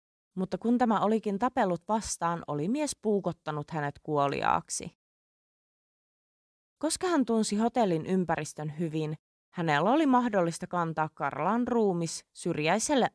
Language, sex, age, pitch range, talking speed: Finnish, female, 20-39, 155-225 Hz, 110 wpm